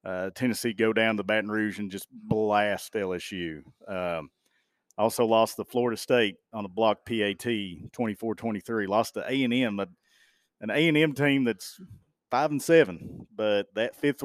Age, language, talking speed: 40-59, English, 150 wpm